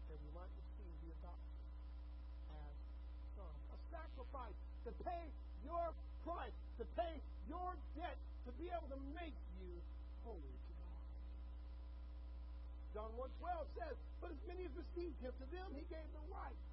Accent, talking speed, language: American, 150 wpm, English